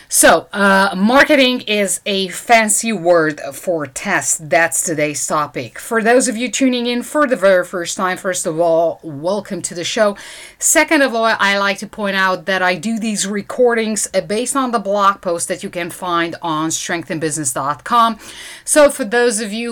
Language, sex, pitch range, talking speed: English, female, 180-235 Hz, 180 wpm